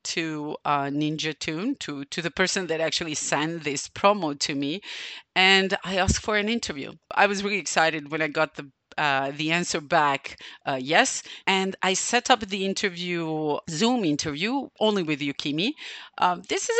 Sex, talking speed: female, 175 wpm